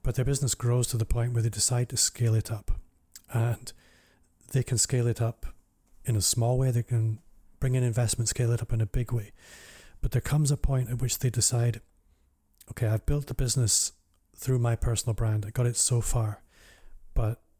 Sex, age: male, 30-49